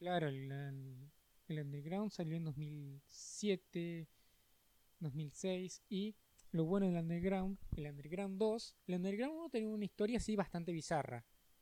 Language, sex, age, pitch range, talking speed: Spanish, male, 20-39, 150-195 Hz, 135 wpm